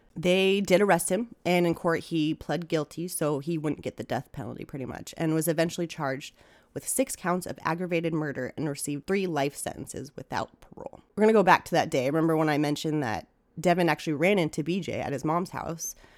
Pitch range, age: 150-180 Hz, 30-49